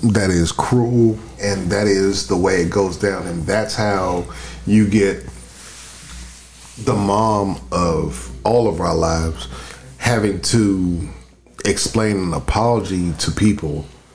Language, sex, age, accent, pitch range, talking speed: English, male, 40-59, American, 85-110 Hz, 125 wpm